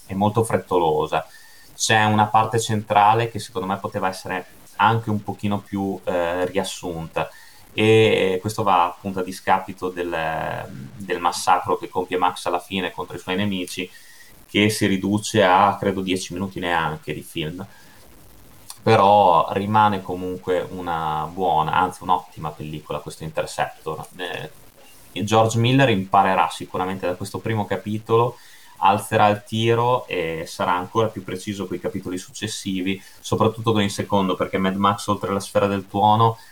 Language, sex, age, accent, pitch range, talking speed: Italian, male, 20-39, native, 95-110 Hz, 145 wpm